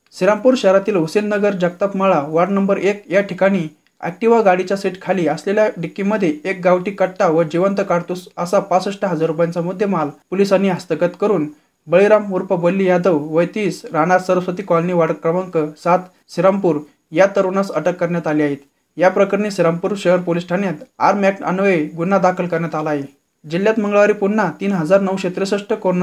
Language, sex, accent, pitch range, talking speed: Marathi, male, native, 165-195 Hz, 150 wpm